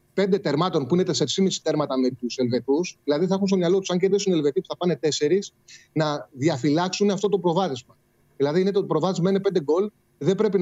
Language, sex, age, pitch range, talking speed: Greek, male, 30-49, 140-195 Hz, 210 wpm